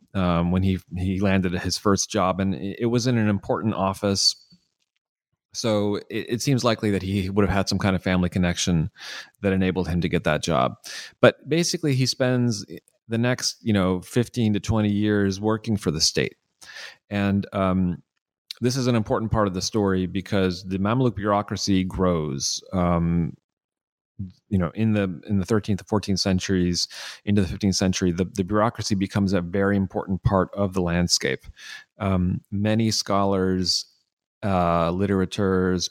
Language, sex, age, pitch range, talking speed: English, male, 30-49, 90-105 Hz, 160 wpm